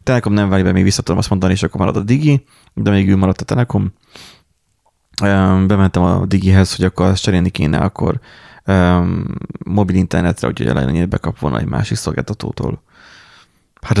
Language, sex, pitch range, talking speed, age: Hungarian, male, 95-120 Hz, 170 wpm, 30-49